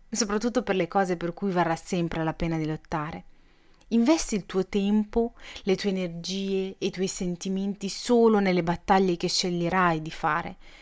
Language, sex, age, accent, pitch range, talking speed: Italian, female, 30-49, native, 175-215 Hz, 165 wpm